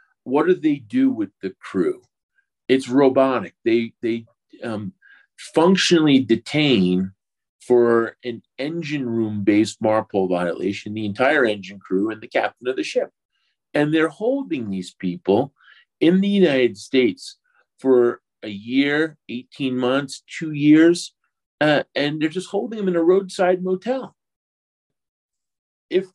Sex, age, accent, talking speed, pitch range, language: male, 50-69, American, 135 wpm, 115-185 Hz, English